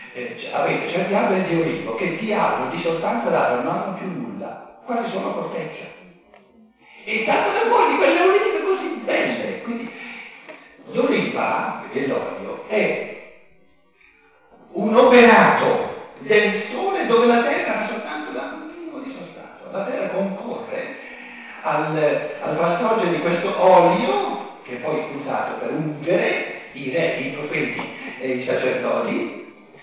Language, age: Italian, 50-69